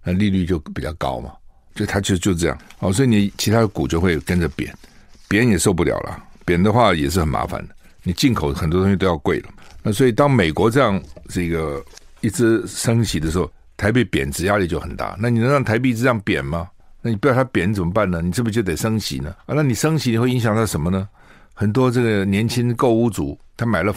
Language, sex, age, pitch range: Chinese, male, 60-79, 90-115 Hz